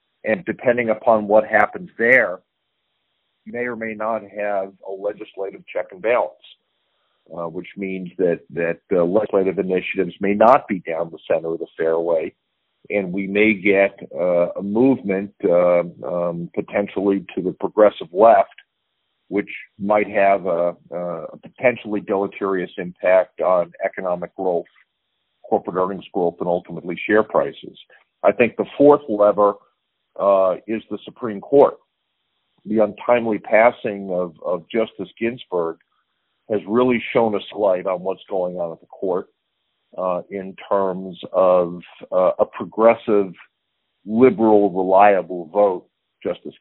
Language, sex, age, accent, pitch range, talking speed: English, male, 50-69, American, 90-105 Hz, 140 wpm